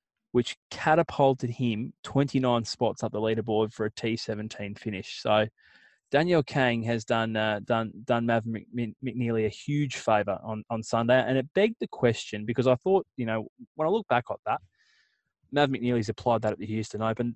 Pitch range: 110-130 Hz